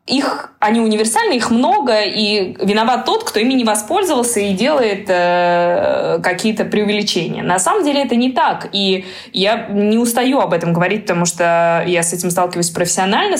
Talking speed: 165 wpm